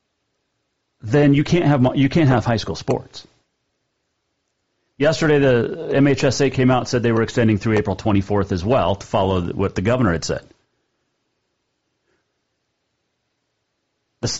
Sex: male